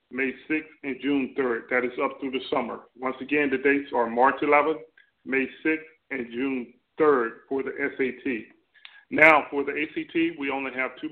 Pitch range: 135-155 Hz